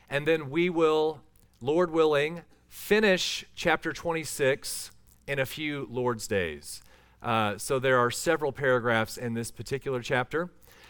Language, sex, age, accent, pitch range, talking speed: English, male, 40-59, American, 120-160 Hz, 130 wpm